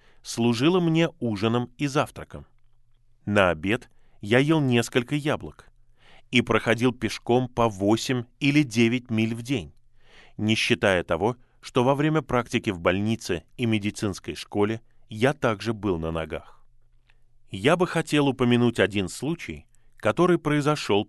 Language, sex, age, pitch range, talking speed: Russian, male, 20-39, 105-130 Hz, 130 wpm